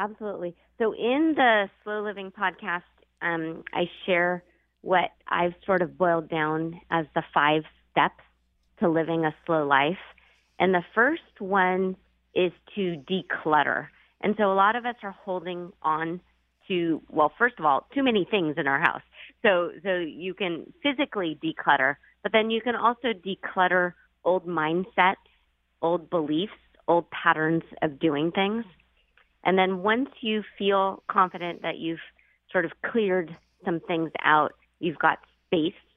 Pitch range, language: 160-195 Hz, English